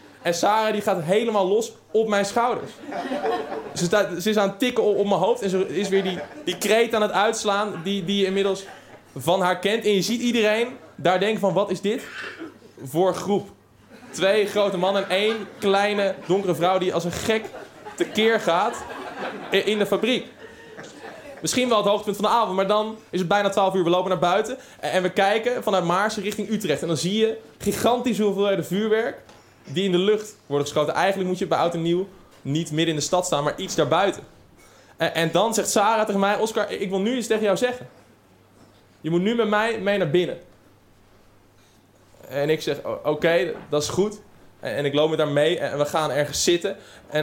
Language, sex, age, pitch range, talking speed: Dutch, male, 20-39, 165-210 Hz, 205 wpm